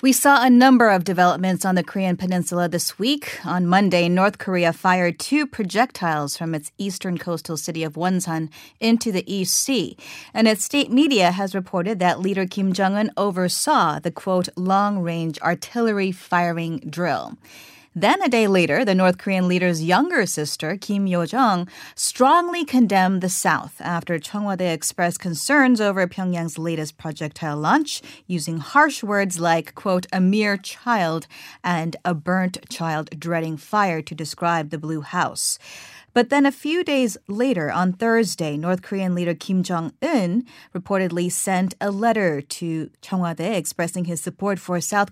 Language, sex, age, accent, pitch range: Korean, female, 30-49, American, 170-200 Hz